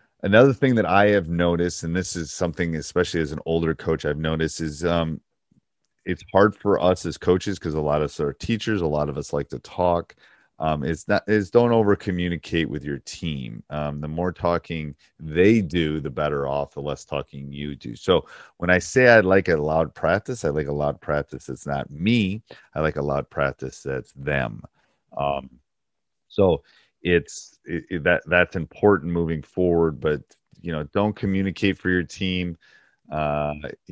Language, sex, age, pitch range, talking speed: English, male, 30-49, 75-95 Hz, 180 wpm